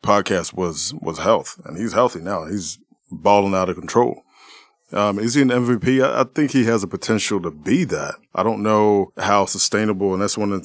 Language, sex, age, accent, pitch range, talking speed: English, male, 20-39, American, 90-105 Hz, 215 wpm